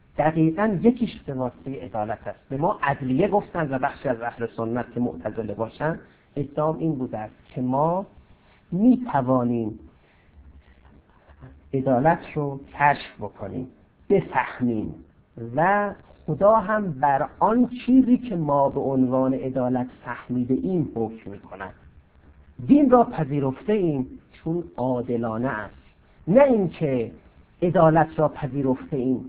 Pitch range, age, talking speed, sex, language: 115-160 Hz, 50-69, 115 wpm, male, Persian